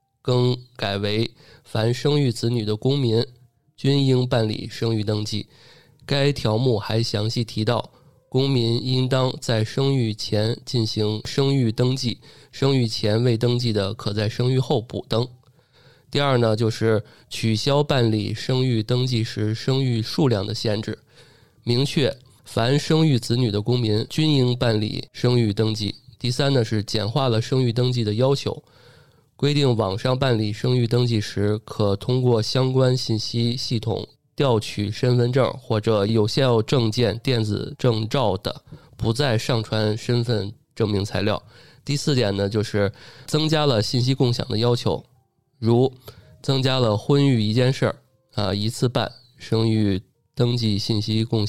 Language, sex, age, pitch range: Chinese, male, 20-39, 110-130 Hz